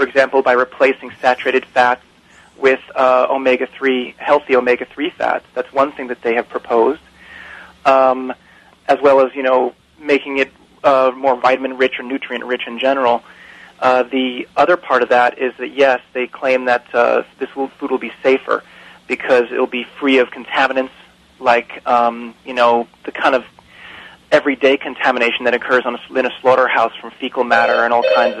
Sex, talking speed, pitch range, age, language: male, 165 wpm, 120-135 Hz, 30-49, English